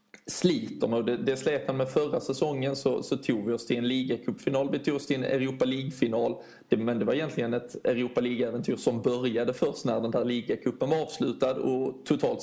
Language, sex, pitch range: English, male, 115-140 Hz